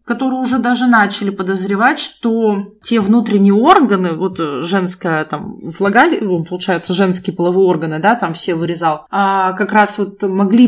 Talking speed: 140 wpm